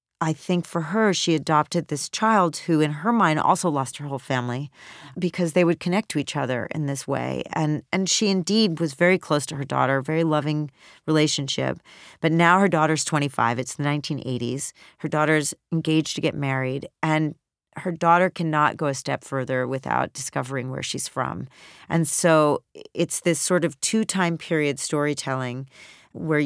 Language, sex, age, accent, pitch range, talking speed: English, female, 40-59, American, 140-165 Hz, 175 wpm